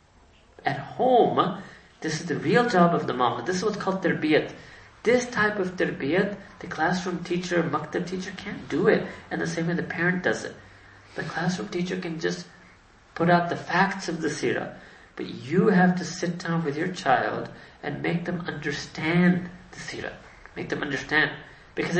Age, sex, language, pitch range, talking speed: 40-59, male, English, 145-185 Hz, 180 wpm